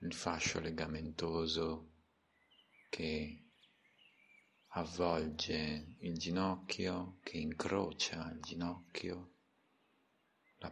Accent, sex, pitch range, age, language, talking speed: native, male, 80-90 Hz, 50-69, Italian, 65 wpm